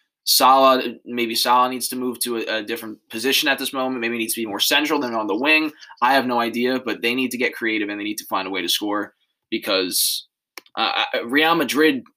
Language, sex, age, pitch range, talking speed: English, male, 20-39, 110-135 Hz, 235 wpm